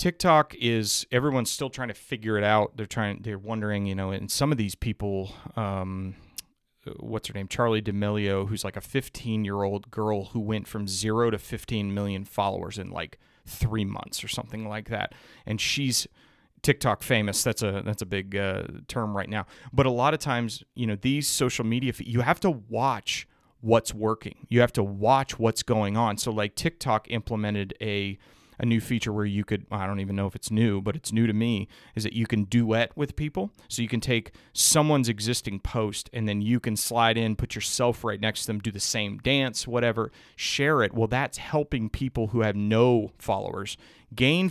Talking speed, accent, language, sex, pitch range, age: 200 wpm, American, English, male, 105-120 Hz, 30-49